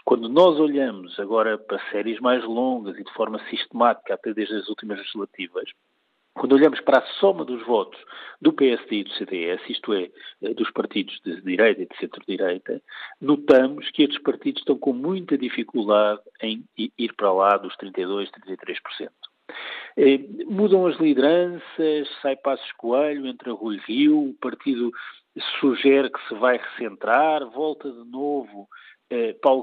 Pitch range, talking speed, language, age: 130-180 Hz, 150 wpm, Portuguese, 50-69